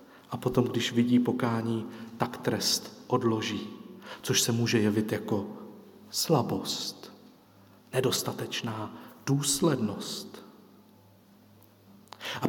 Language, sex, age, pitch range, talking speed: Slovak, male, 40-59, 120-170 Hz, 80 wpm